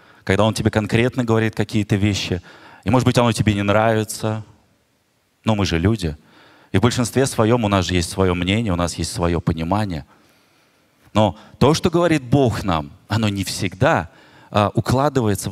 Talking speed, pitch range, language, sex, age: 165 wpm, 95-125 Hz, Russian, male, 30-49